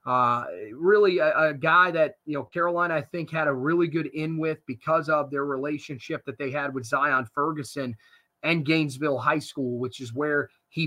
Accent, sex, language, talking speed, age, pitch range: American, male, English, 195 wpm, 30-49, 140-165 Hz